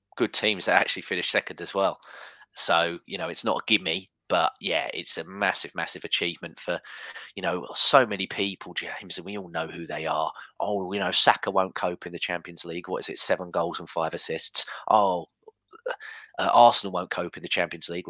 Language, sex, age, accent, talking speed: English, male, 20-39, British, 205 wpm